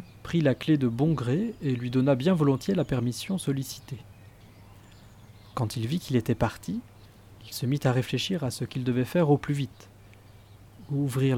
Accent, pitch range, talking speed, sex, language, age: French, 110-145 Hz, 180 wpm, male, French, 20-39